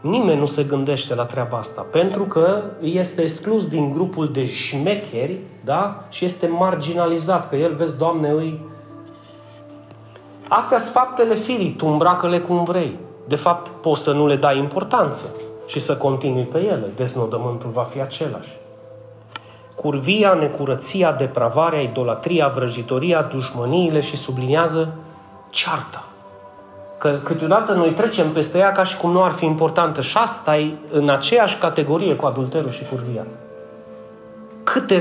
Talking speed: 140 wpm